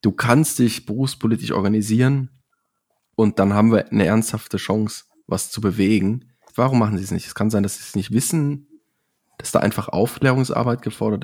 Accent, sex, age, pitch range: German, male, 20-39, 110-140 Hz